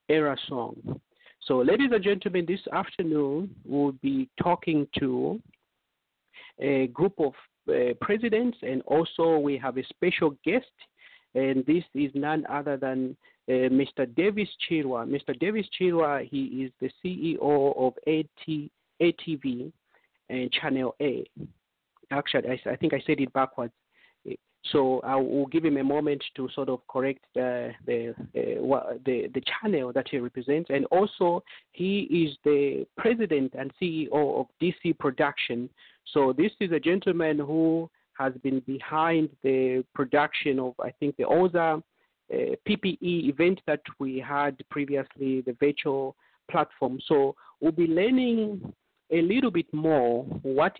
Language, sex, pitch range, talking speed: English, male, 135-175 Hz, 145 wpm